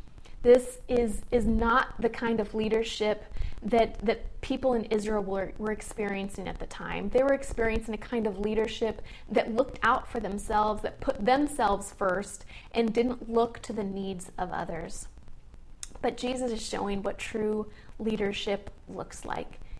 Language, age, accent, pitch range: English, 30-49, American, 205-240 Hz